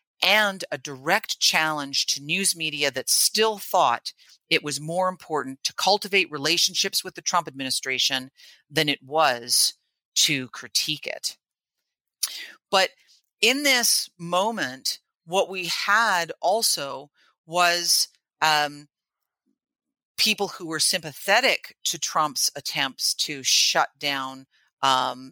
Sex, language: female, English